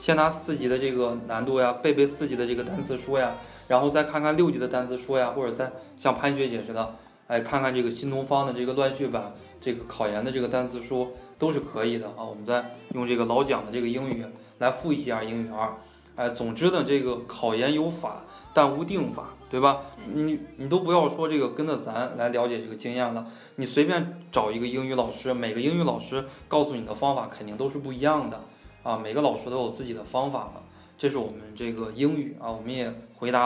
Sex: male